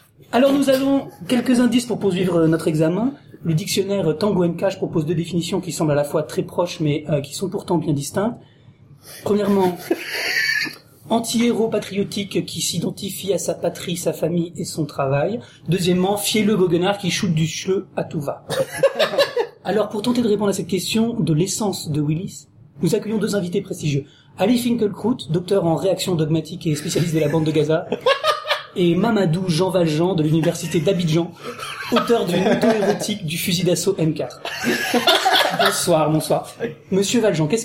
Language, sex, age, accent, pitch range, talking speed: French, male, 40-59, French, 165-220 Hz, 165 wpm